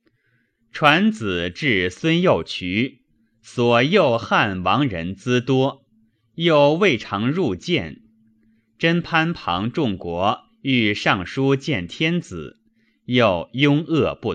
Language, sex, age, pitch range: Chinese, male, 30-49, 100-155 Hz